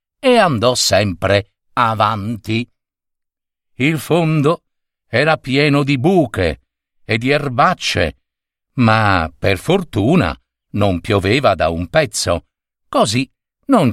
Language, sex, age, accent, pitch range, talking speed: Italian, male, 50-69, native, 105-140 Hz, 100 wpm